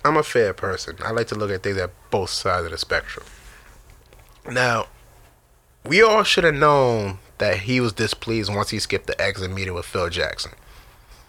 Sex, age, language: male, 30-49, English